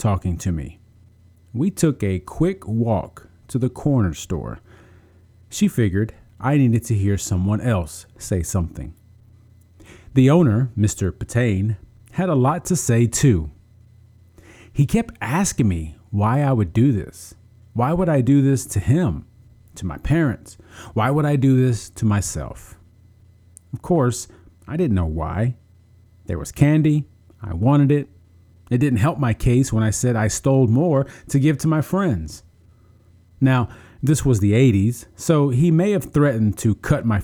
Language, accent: English, American